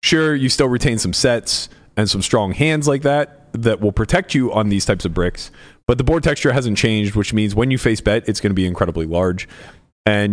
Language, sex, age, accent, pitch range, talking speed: English, male, 30-49, American, 90-115 Hz, 230 wpm